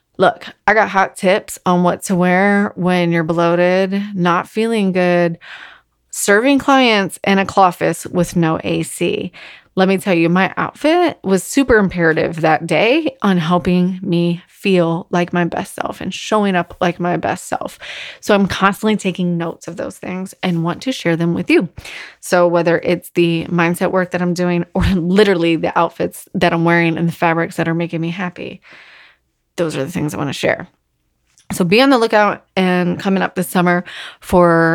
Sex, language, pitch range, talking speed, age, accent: female, English, 170-200 Hz, 185 wpm, 30-49, American